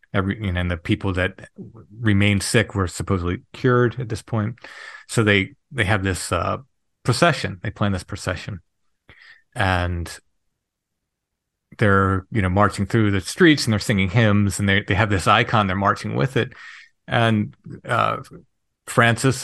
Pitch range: 95-115 Hz